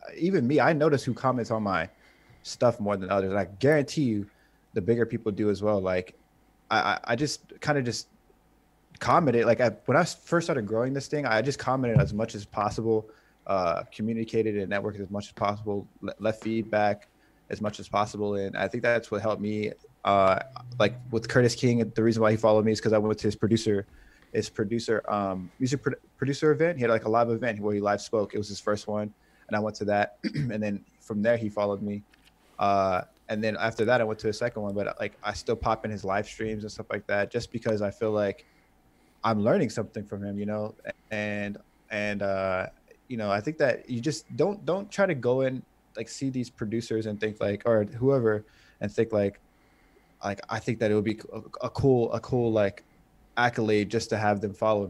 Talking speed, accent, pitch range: 220 wpm, American, 105-120 Hz